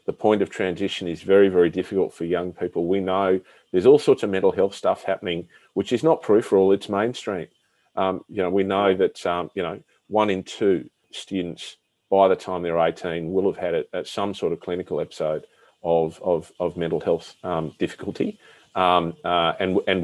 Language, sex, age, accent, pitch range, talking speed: English, male, 40-59, Australian, 90-110 Hz, 200 wpm